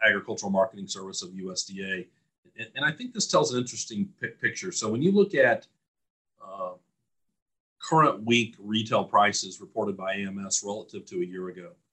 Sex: male